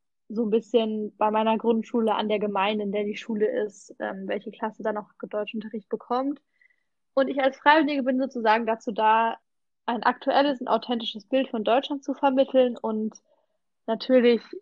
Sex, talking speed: female, 165 wpm